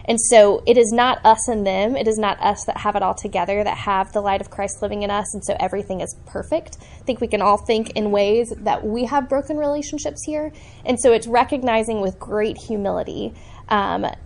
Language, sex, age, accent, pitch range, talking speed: English, female, 10-29, American, 200-260 Hz, 225 wpm